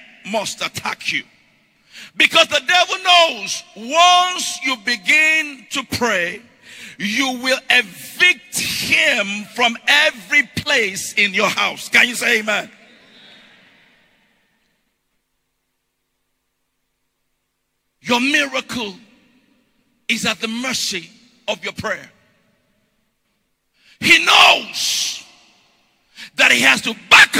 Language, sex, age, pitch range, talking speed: English, male, 50-69, 225-265 Hz, 90 wpm